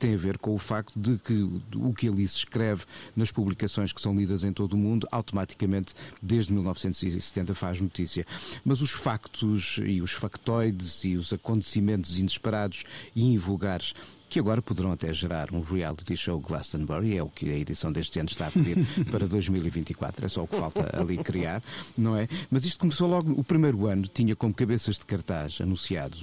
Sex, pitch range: male, 95-120 Hz